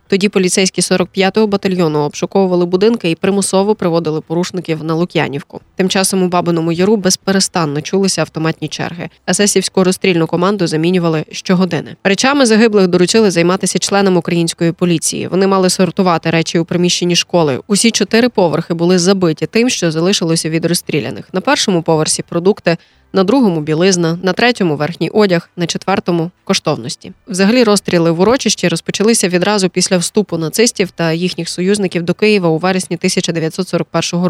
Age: 20-39